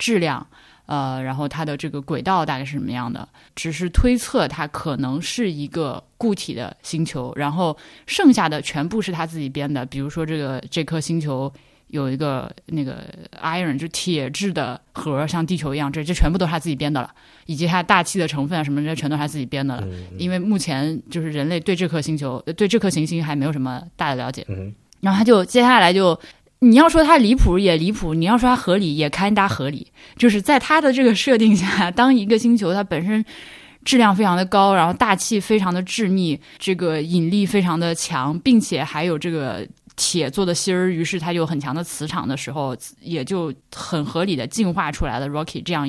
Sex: female